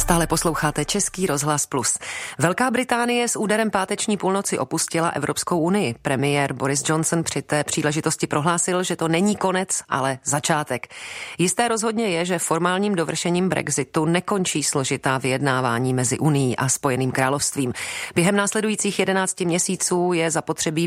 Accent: native